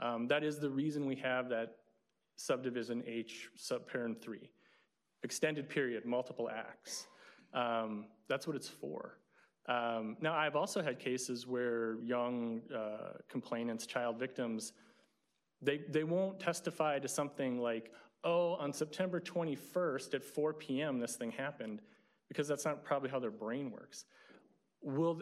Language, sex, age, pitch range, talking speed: English, male, 30-49, 120-155 Hz, 140 wpm